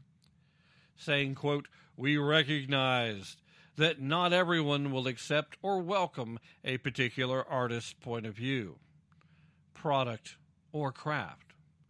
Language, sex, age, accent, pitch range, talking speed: English, male, 50-69, American, 130-165 Hz, 100 wpm